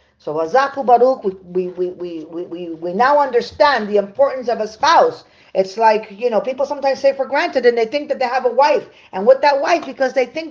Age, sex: 40-59, female